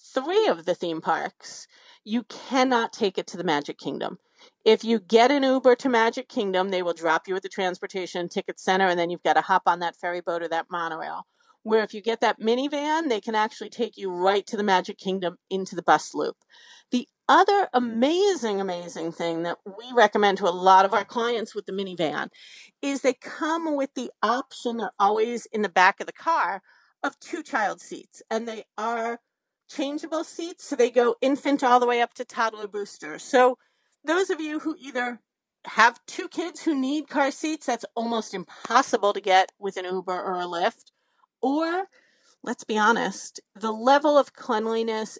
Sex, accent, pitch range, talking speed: female, American, 185-275 Hz, 195 wpm